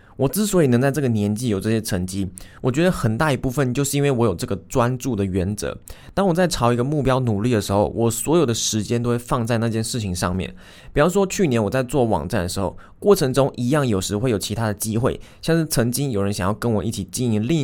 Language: Chinese